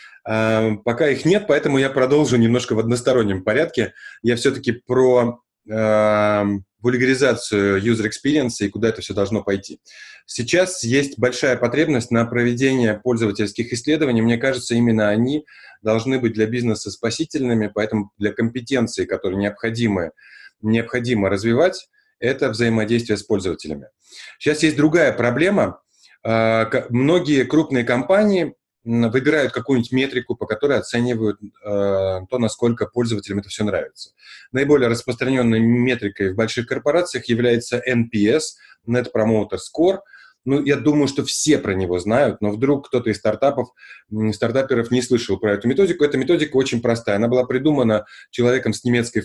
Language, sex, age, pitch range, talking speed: Russian, male, 20-39, 110-135 Hz, 140 wpm